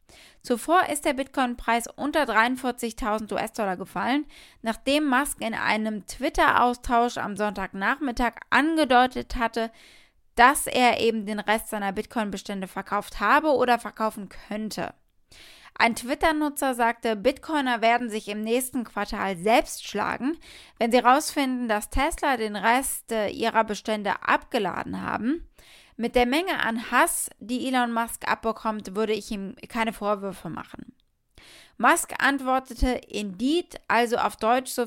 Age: 20-39